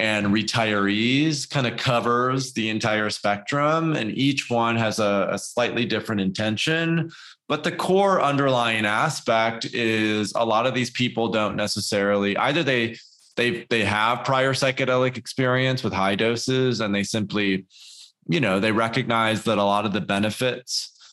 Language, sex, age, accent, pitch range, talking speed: English, male, 20-39, American, 105-120 Hz, 155 wpm